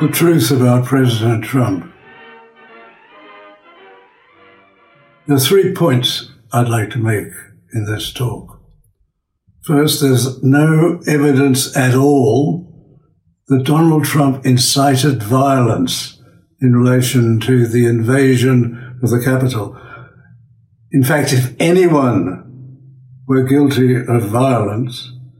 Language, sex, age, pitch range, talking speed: English, male, 60-79, 120-145 Hz, 100 wpm